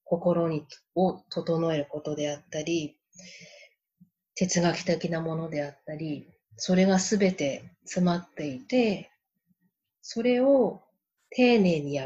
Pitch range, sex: 165-195 Hz, female